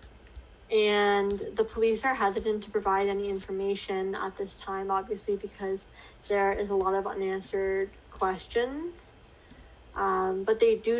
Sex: female